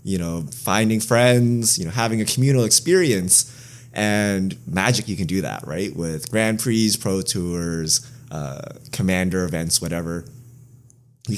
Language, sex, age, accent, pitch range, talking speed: English, male, 20-39, American, 95-125 Hz, 140 wpm